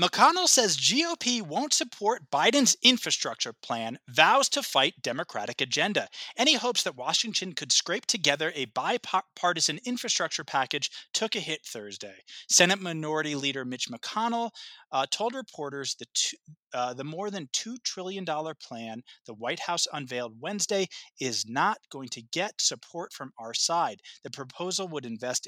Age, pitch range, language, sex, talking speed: 30-49, 125-195 Hz, English, male, 145 wpm